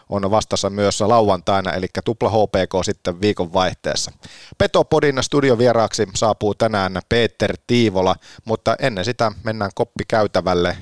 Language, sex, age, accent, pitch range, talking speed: Finnish, male, 30-49, native, 100-125 Hz, 115 wpm